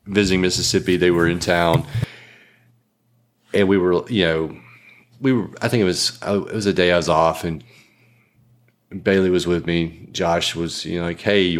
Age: 30-49